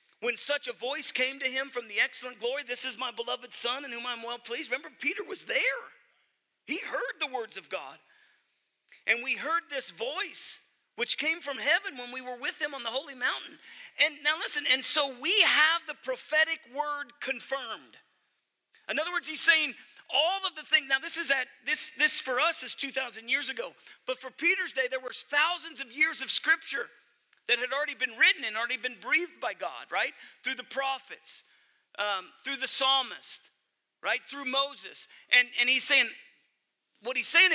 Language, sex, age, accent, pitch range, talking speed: English, male, 40-59, American, 255-335 Hz, 195 wpm